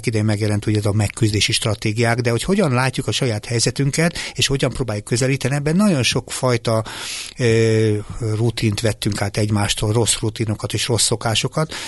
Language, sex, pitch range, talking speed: Hungarian, male, 105-130 Hz, 150 wpm